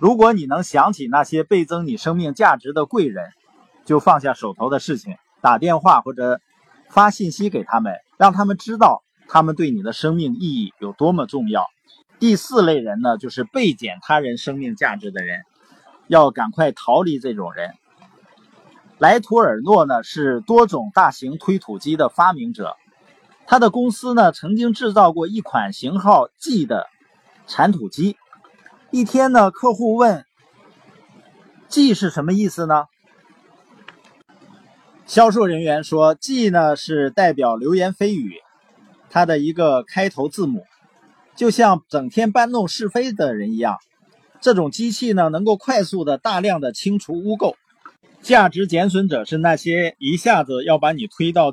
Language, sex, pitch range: Chinese, male, 160-225 Hz